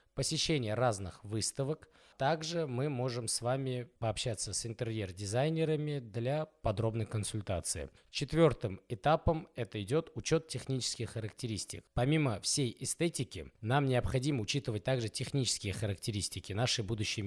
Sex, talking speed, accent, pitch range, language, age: male, 110 wpm, native, 110-140 Hz, Russian, 20-39